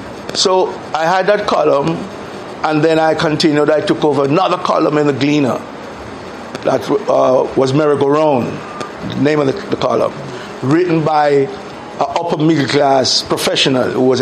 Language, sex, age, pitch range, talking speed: English, male, 50-69, 135-155 Hz, 155 wpm